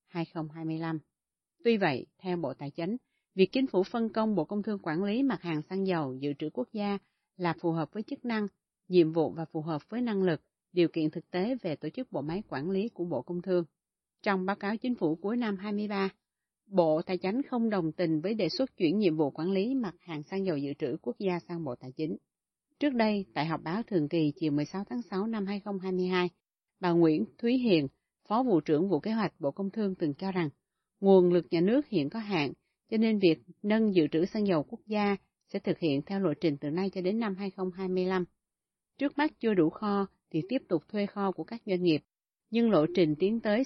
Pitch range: 165-210 Hz